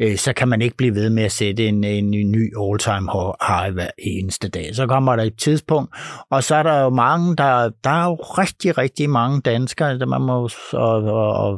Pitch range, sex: 110-140 Hz, male